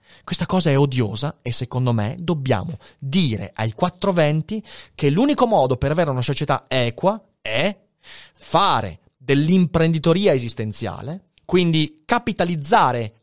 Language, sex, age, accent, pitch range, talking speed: Italian, male, 30-49, native, 120-180 Hz, 115 wpm